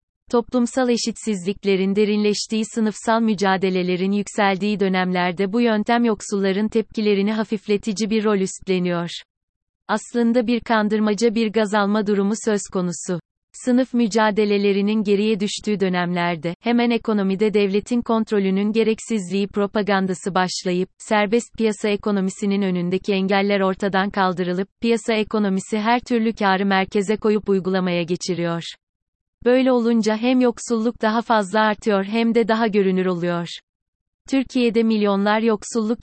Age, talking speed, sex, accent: 30-49, 110 wpm, female, native